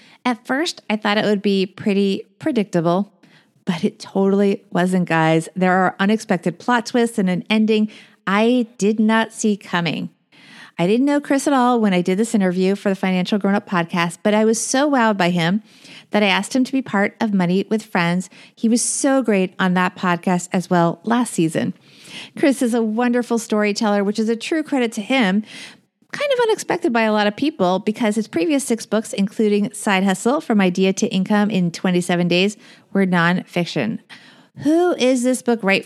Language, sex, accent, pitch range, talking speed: English, female, American, 190-245 Hz, 190 wpm